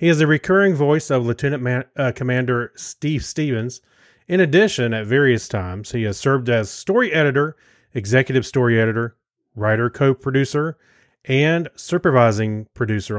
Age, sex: 30-49, male